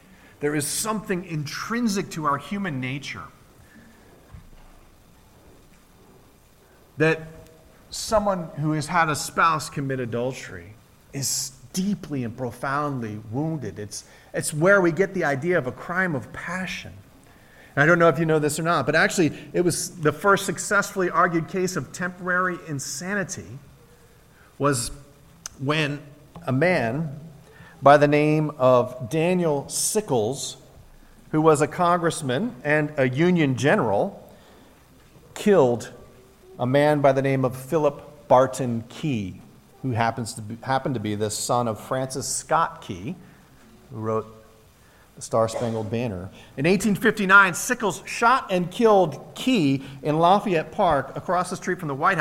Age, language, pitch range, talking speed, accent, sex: 40-59, English, 130-175 Hz, 135 wpm, American, male